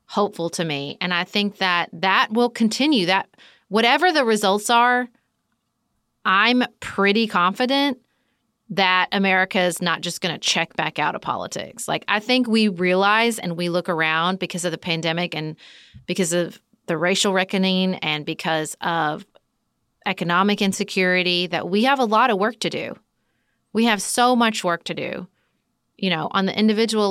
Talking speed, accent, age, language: 165 wpm, American, 30-49, English